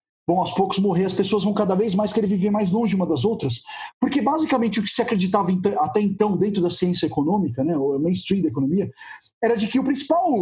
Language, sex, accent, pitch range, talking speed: Portuguese, male, Brazilian, 190-280 Hz, 230 wpm